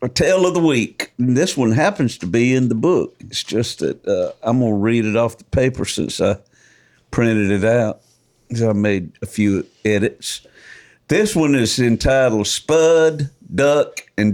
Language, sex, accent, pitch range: English, male, American, 105-130 Hz